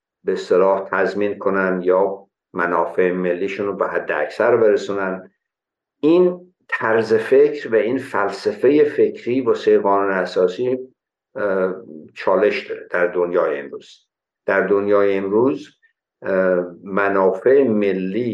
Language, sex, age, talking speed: Persian, male, 60-79, 110 wpm